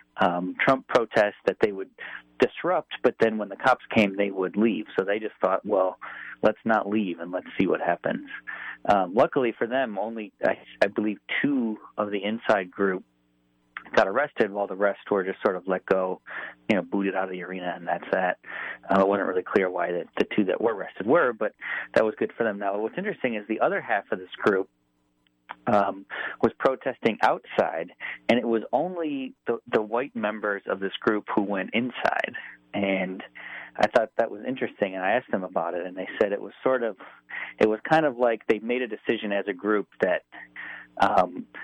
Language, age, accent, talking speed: English, 40-59, American, 205 wpm